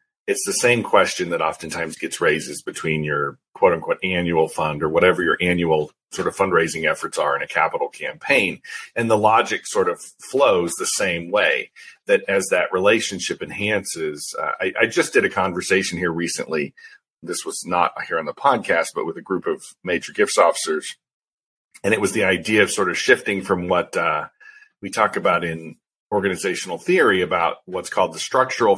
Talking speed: 180 wpm